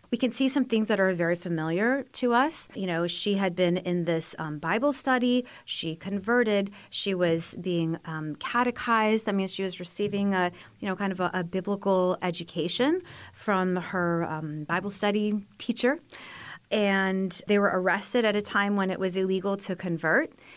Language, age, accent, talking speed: English, 30-49, American, 180 wpm